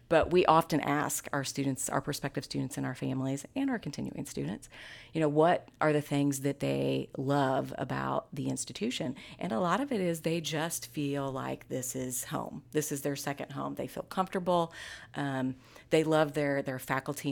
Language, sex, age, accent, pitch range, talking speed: English, female, 30-49, American, 135-160 Hz, 190 wpm